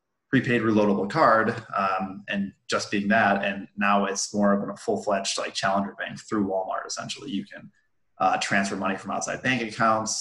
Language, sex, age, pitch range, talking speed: English, male, 20-39, 100-110 Hz, 175 wpm